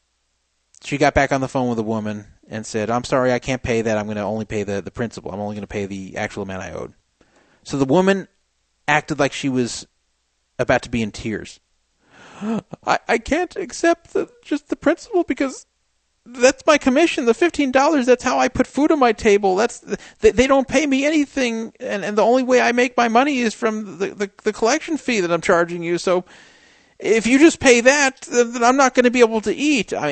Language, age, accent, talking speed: English, 40-59, American, 225 wpm